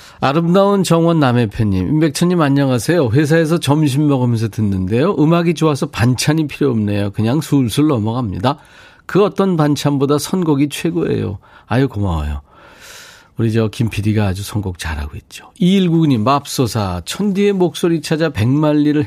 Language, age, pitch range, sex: Korean, 40-59, 110-165 Hz, male